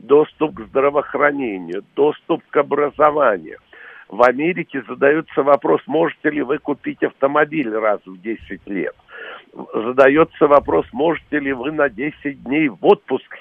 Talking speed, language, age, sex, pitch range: 130 wpm, Russian, 60-79, male, 125-165 Hz